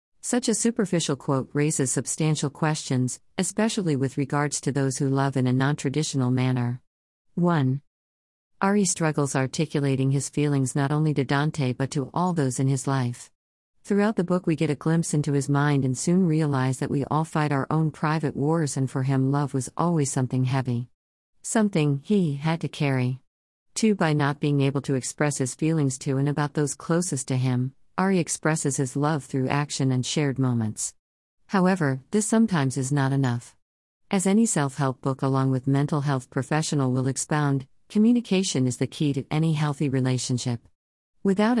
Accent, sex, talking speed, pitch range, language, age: American, female, 175 wpm, 130-160 Hz, English, 50-69